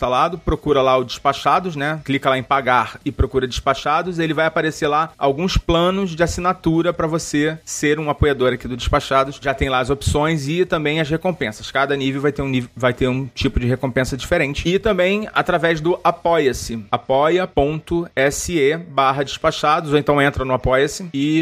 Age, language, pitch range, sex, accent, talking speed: 30-49, Portuguese, 135-165 Hz, male, Brazilian, 180 wpm